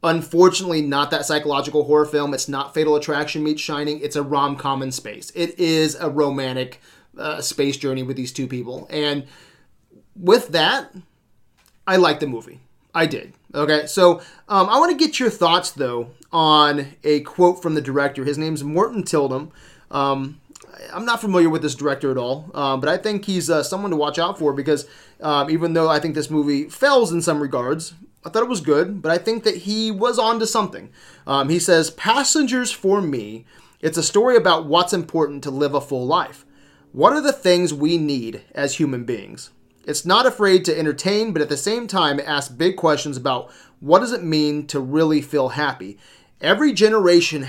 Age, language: 30-49, English